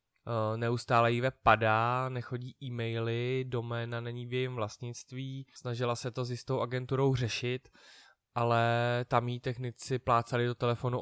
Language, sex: Czech, male